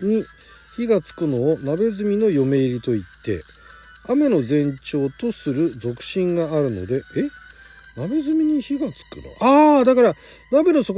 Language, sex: Japanese, male